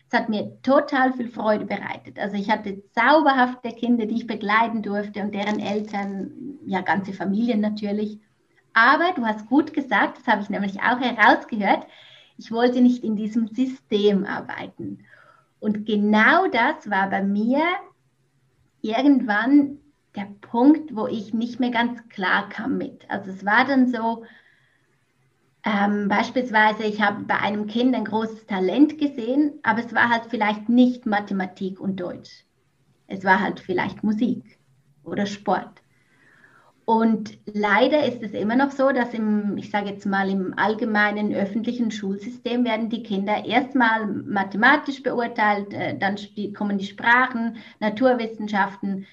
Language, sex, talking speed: German, female, 145 wpm